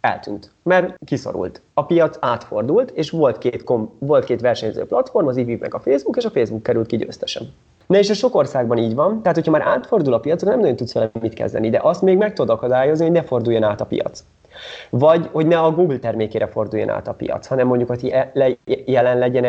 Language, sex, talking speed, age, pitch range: Hungarian, male, 220 wpm, 30-49, 120-170 Hz